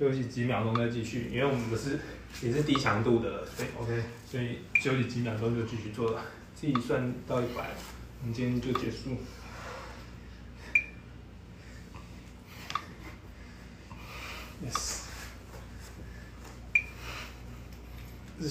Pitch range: 85-135 Hz